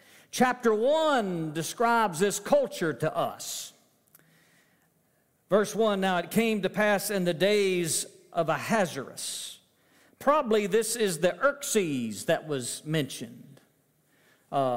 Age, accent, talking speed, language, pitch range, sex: 50-69, American, 115 wpm, English, 180-230 Hz, male